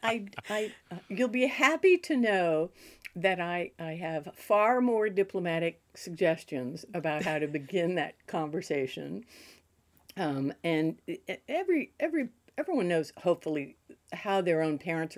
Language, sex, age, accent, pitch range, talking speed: English, female, 60-79, American, 145-205 Hz, 130 wpm